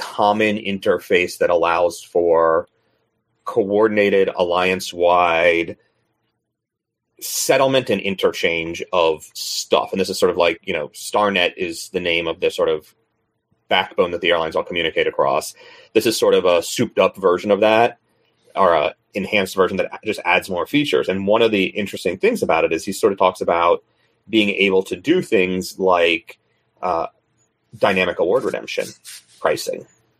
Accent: American